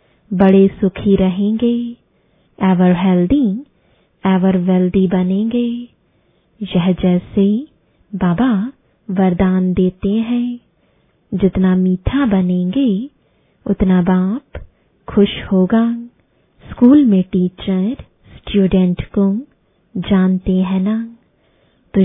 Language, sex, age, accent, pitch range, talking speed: English, female, 20-39, Indian, 185-225 Hz, 80 wpm